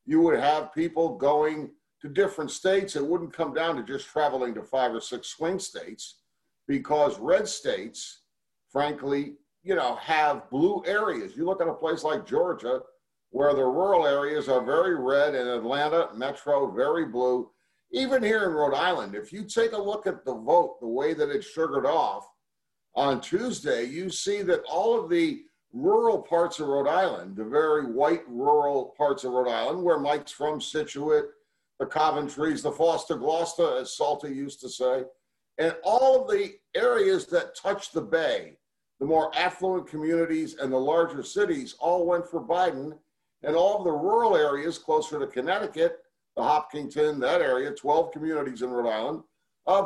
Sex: male